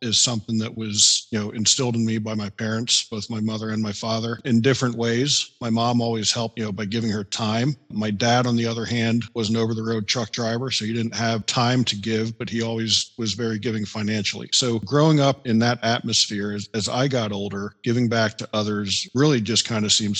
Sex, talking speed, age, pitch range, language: male, 225 wpm, 40-59, 105-120 Hz, English